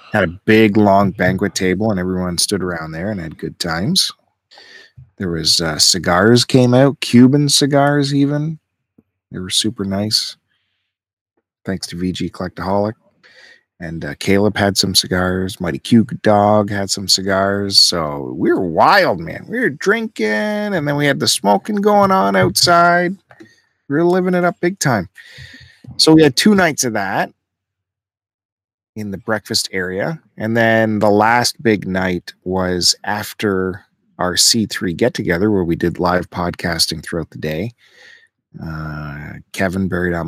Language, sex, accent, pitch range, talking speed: English, male, American, 95-125 Hz, 155 wpm